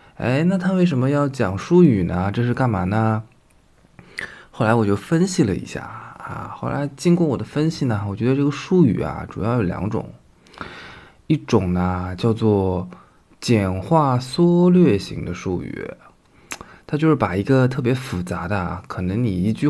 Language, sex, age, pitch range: Chinese, male, 20-39, 95-130 Hz